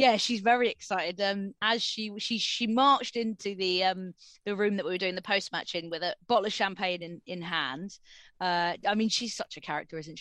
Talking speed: 230 wpm